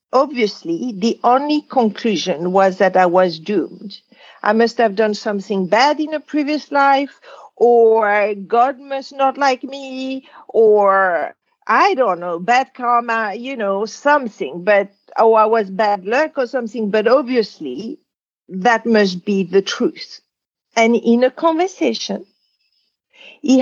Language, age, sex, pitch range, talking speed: English, 50-69, female, 215-315 Hz, 135 wpm